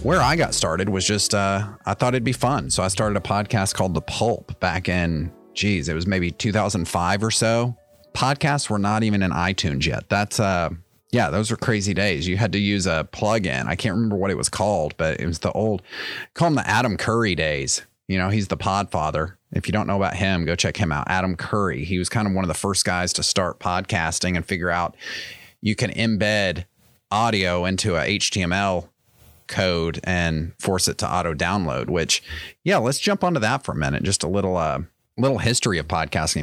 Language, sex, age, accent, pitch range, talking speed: English, male, 30-49, American, 90-115 Hz, 215 wpm